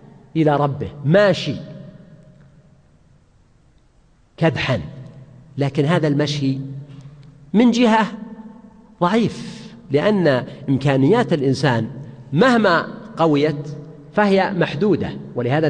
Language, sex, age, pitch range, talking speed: Arabic, male, 50-69, 145-205 Hz, 70 wpm